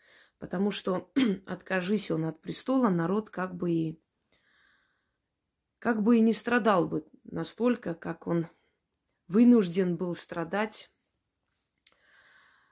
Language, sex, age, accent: Russian, female, 30-49, native